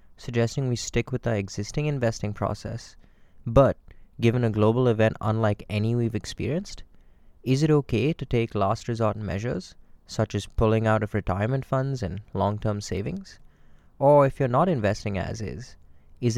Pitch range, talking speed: 100-130 Hz, 160 wpm